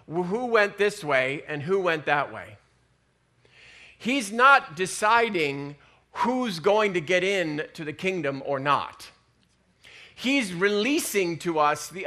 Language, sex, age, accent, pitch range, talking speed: English, male, 40-59, American, 145-195 Hz, 135 wpm